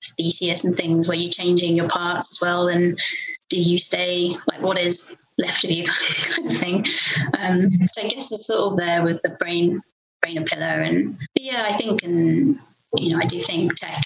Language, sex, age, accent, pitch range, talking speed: English, female, 20-39, British, 170-200 Hz, 210 wpm